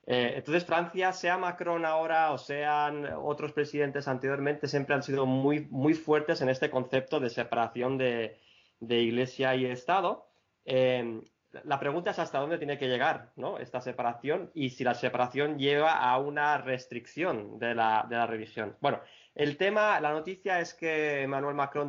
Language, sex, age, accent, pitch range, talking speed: Spanish, male, 20-39, Spanish, 125-150 Hz, 165 wpm